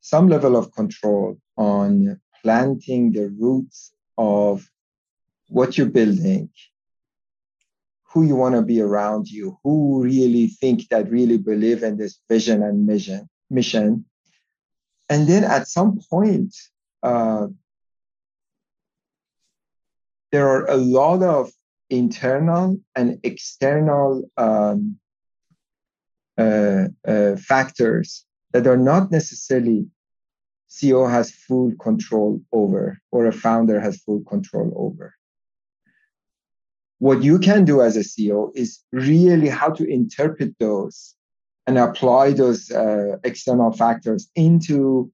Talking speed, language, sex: 115 wpm, English, male